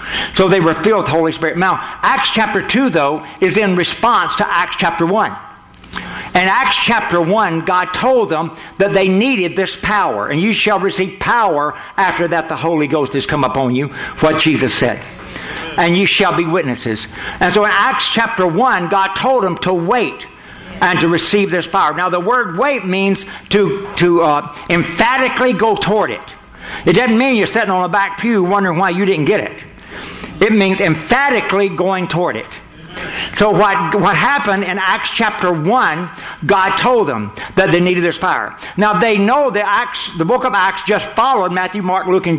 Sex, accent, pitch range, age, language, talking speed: male, American, 170-210 Hz, 60-79, English, 190 wpm